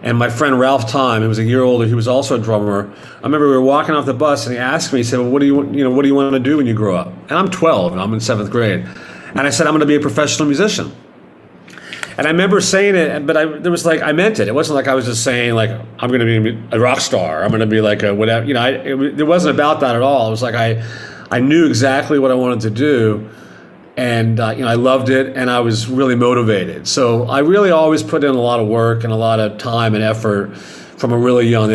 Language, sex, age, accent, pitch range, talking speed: English, male, 40-59, American, 115-150 Hz, 285 wpm